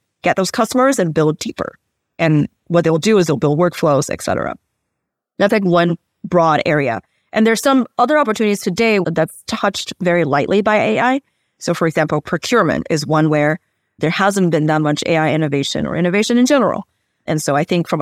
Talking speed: 190 wpm